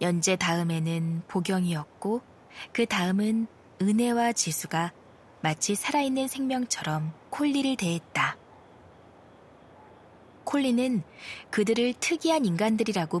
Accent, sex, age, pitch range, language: native, female, 20-39, 170-225 Hz, Korean